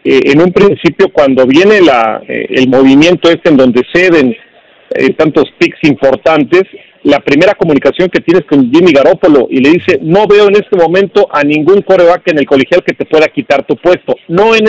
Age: 40-59